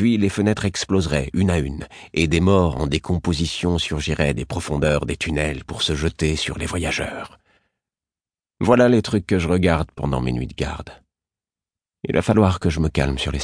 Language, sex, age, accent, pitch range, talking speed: French, male, 50-69, French, 75-105 Hz, 190 wpm